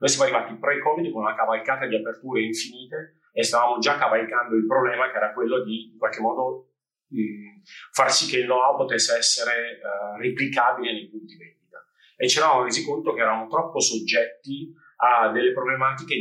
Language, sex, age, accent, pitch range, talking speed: Italian, male, 30-49, native, 120-150 Hz, 180 wpm